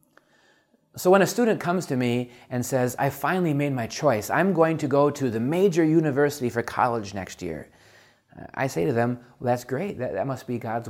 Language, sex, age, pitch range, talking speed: English, male, 30-49, 115-150 Hz, 200 wpm